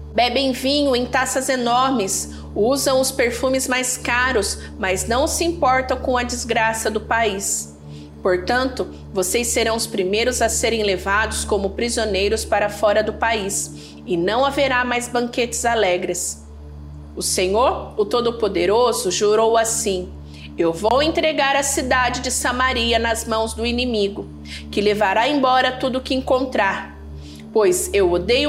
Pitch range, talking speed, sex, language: 190-260 Hz, 140 wpm, female, Portuguese